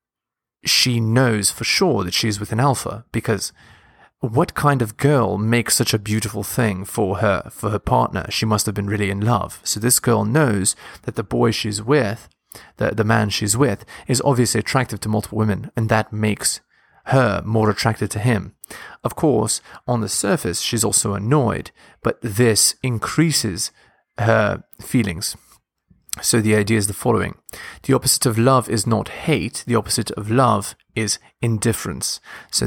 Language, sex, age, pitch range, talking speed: English, male, 30-49, 105-120 Hz, 170 wpm